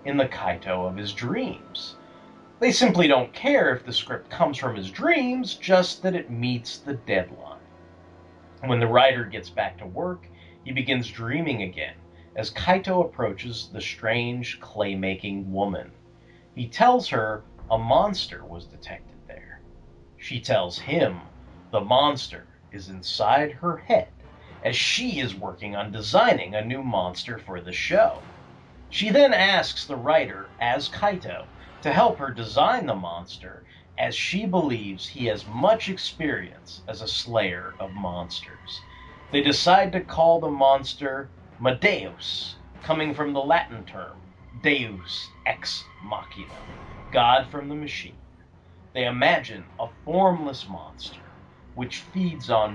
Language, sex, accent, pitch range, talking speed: English, male, American, 90-145 Hz, 140 wpm